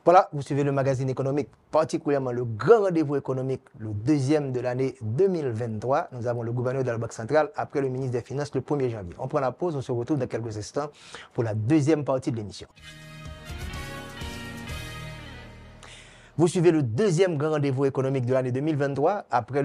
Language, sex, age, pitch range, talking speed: French, male, 30-49, 120-150 Hz, 185 wpm